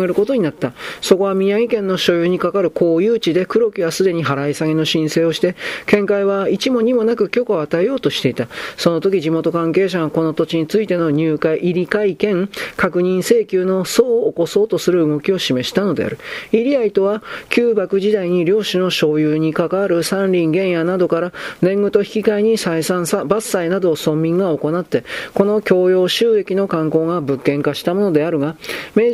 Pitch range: 160-200 Hz